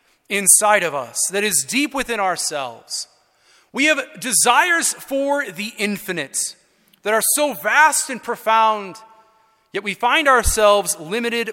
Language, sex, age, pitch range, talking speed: English, male, 30-49, 195-260 Hz, 130 wpm